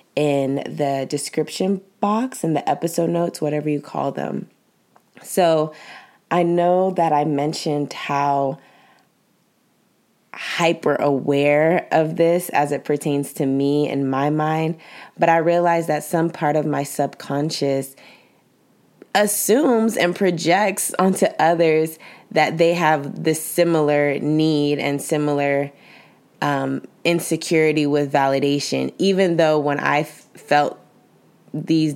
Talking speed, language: 120 wpm, English